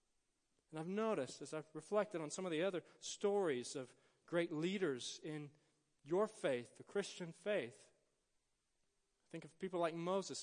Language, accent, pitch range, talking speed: English, American, 145-195 Hz, 155 wpm